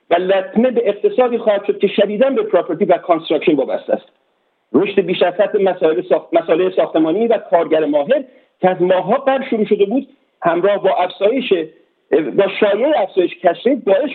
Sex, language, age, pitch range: male, Persian, 50-69, 185-275 Hz